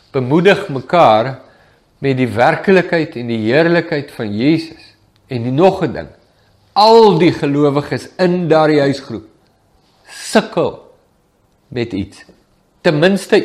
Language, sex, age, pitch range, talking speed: English, male, 50-69, 140-195 Hz, 120 wpm